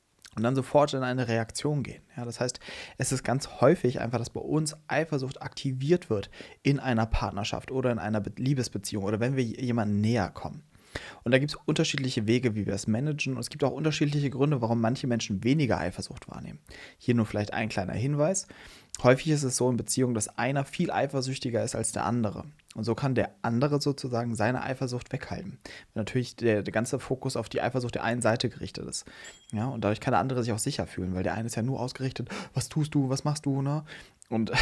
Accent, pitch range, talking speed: German, 110-135 Hz, 215 wpm